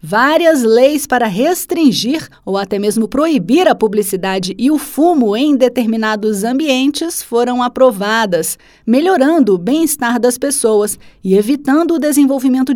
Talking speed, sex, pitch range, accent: 125 wpm, female, 220-280 Hz, Brazilian